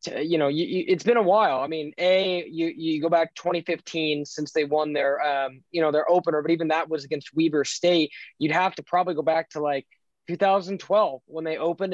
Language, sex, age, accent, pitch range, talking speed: English, male, 20-39, American, 150-180 Hz, 225 wpm